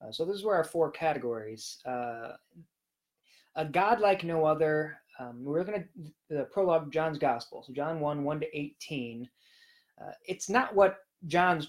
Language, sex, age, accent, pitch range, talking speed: English, male, 20-39, American, 135-165 Hz, 175 wpm